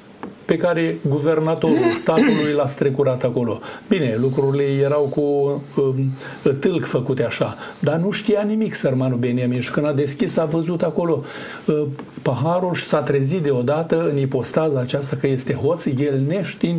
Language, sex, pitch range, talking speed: Romanian, male, 130-155 Hz, 145 wpm